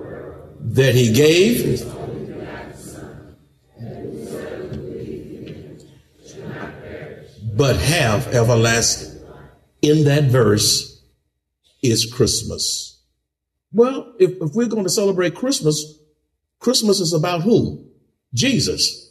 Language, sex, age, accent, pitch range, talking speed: English, male, 50-69, American, 135-220 Hz, 75 wpm